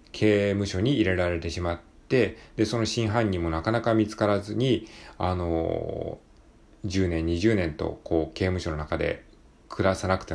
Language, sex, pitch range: Japanese, male, 85-115 Hz